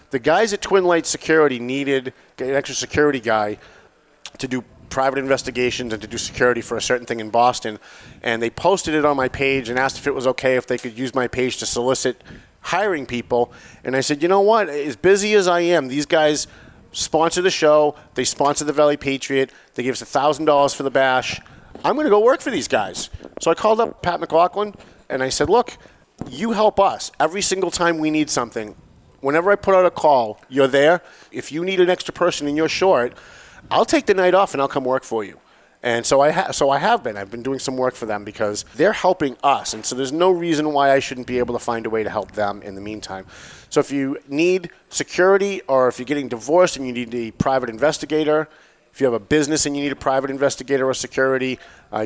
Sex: male